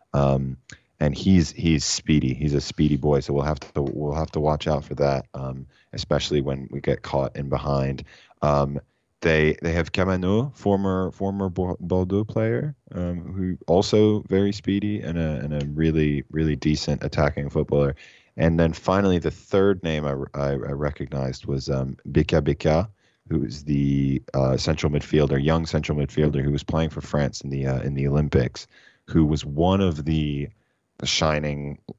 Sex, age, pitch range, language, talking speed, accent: male, 10-29, 70-85 Hz, English, 170 wpm, American